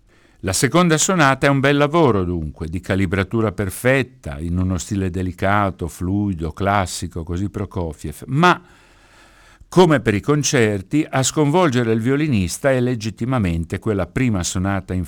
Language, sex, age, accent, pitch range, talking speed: Italian, male, 60-79, native, 90-120 Hz, 135 wpm